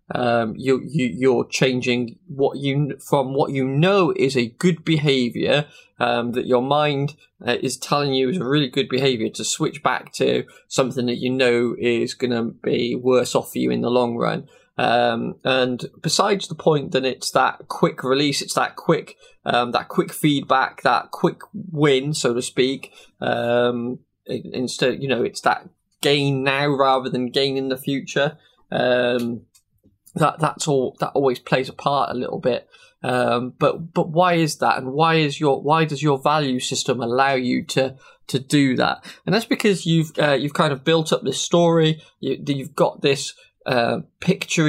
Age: 20-39